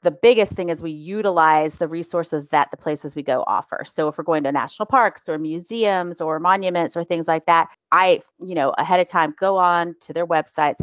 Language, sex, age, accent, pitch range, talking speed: English, female, 30-49, American, 150-180 Hz, 220 wpm